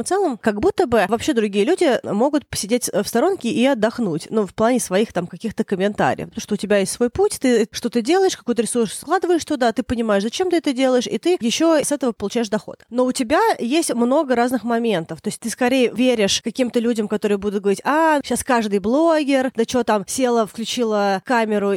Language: Russian